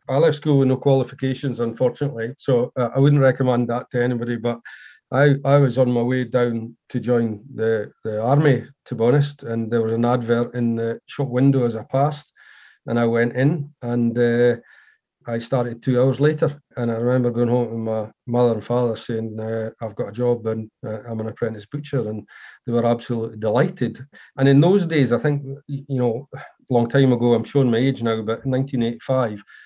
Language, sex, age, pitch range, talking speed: English, male, 40-59, 115-135 Hz, 200 wpm